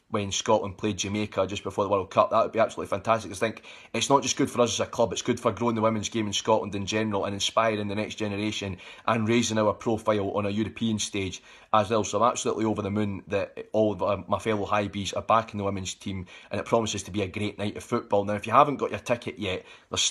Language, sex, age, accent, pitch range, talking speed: English, male, 20-39, British, 100-120 Hz, 260 wpm